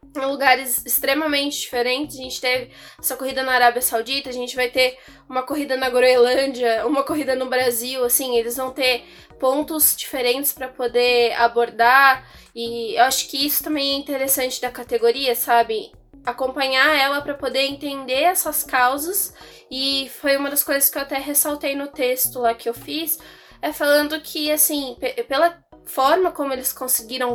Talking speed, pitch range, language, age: 165 wpm, 245-285 Hz, Portuguese, 10-29